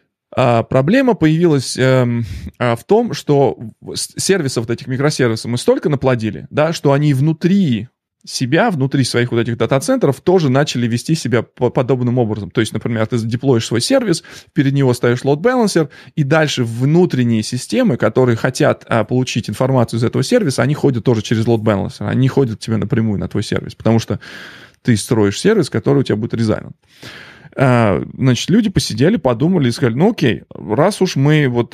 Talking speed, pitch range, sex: 170 wpm, 115-145 Hz, male